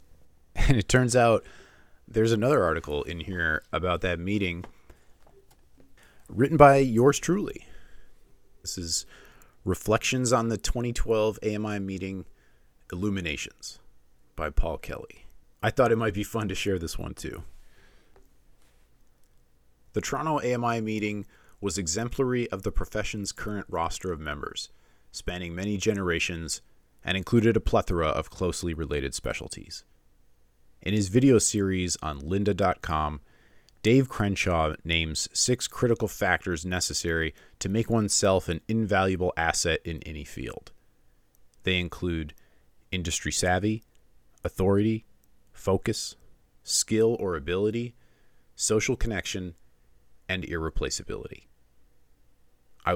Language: English